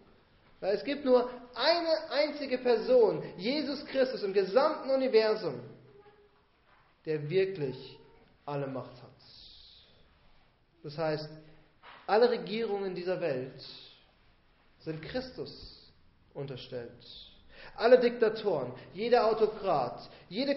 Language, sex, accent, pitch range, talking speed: German, male, German, 160-250 Hz, 95 wpm